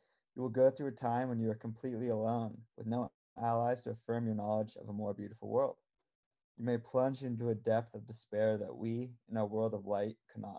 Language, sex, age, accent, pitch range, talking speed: English, male, 20-39, American, 110-125 Hz, 220 wpm